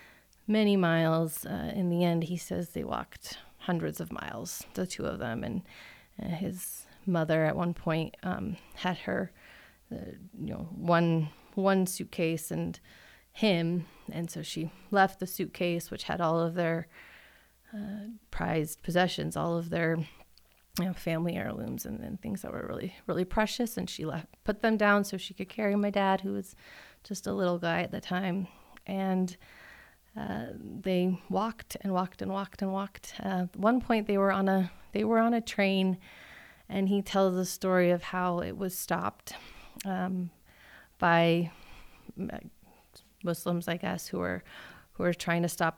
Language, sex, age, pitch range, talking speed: English, female, 30-49, 165-195 Hz, 170 wpm